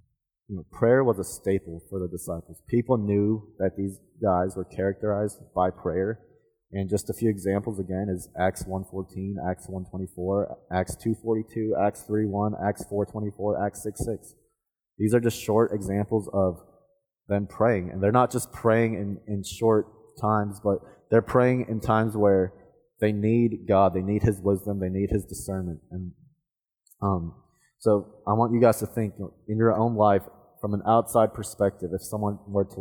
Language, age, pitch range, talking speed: English, 20-39, 95-110 Hz, 165 wpm